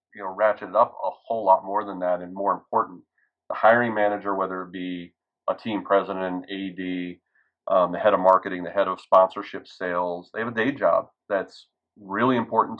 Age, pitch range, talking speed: 30-49, 90-100 Hz, 190 wpm